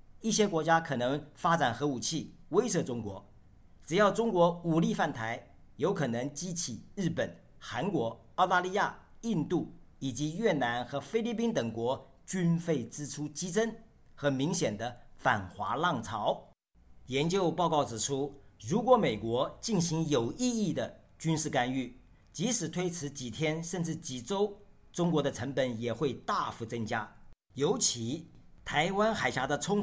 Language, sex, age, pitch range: Chinese, male, 50-69, 135-185 Hz